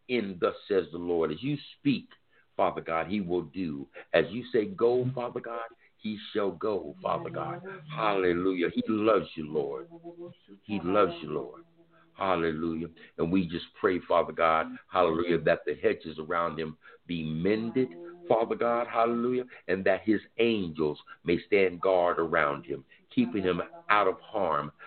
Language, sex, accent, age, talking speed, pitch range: English, male, American, 60-79, 155 wpm, 85-125 Hz